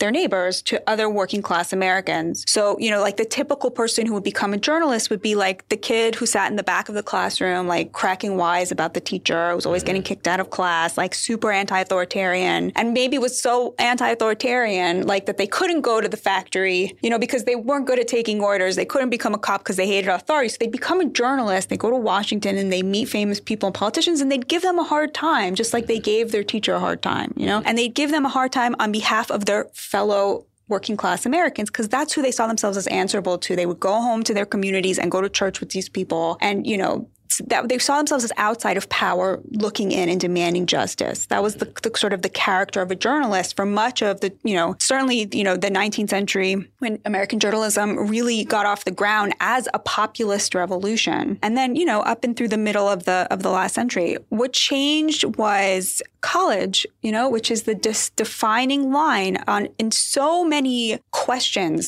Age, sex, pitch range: 20-39, female, 195-240 Hz